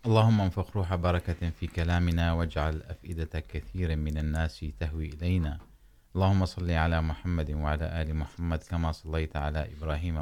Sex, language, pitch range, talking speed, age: male, Urdu, 75-90 Hz, 135 wpm, 30-49